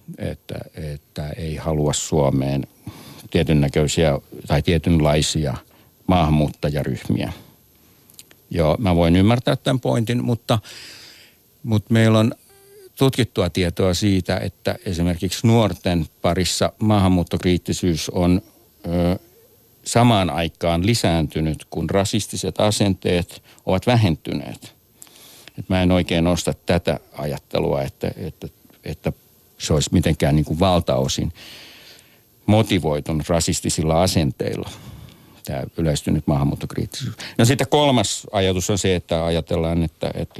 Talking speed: 100 wpm